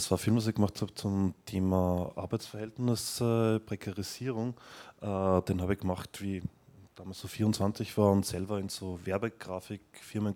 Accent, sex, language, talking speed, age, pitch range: German, male, German, 170 wpm, 20-39, 95-115 Hz